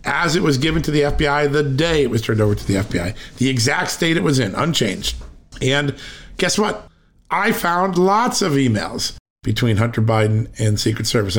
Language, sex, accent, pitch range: English, male, American, 115-145 Hz